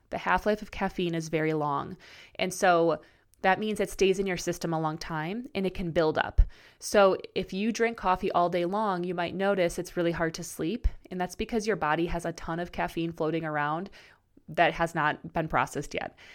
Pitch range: 160-190 Hz